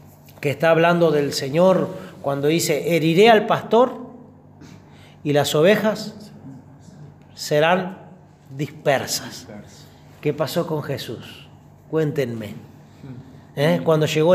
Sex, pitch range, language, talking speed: male, 140-190 Hz, Spanish, 90 wpm